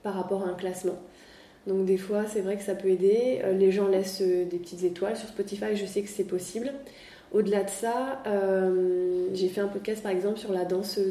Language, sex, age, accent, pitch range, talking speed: French, female, 20-39, French, 180-200 Hz, 215 wpm